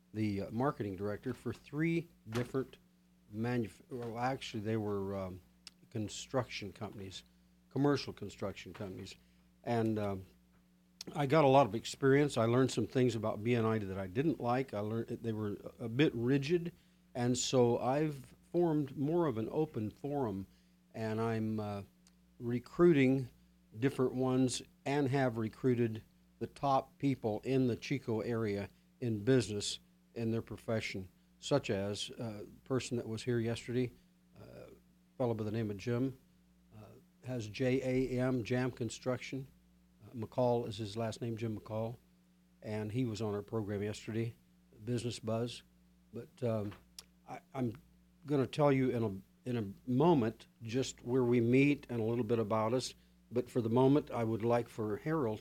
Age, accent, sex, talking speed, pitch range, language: 50-69, American, male, 155 wpm, 105-130 Hz, English